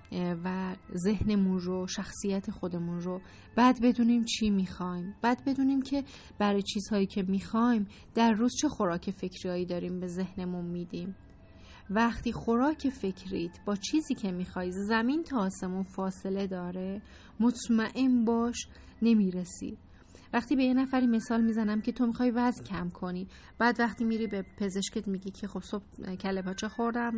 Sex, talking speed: female, 140 wpm